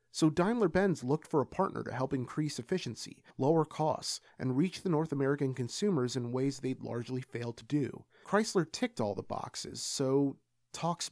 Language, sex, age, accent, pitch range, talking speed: English, male, 30-49, American, 130-165 Hz, 175 wpm